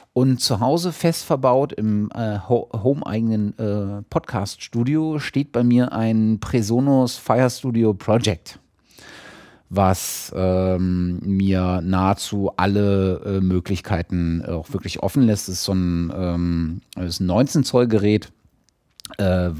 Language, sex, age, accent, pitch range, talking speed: German, male, 30-49, German, 90-125 Hz, 120 wpm